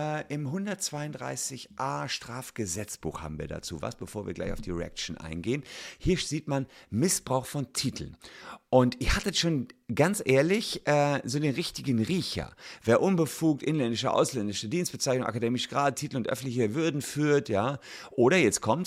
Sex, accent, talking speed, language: male, German, 150 wpm, German